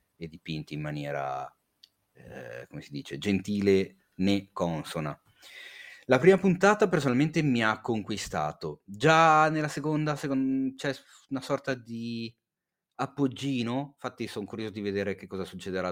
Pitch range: 90-130 Hz